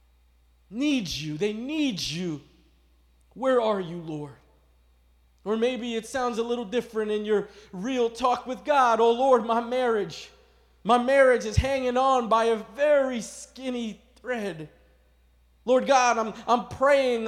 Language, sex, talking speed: English, male, 140 wpm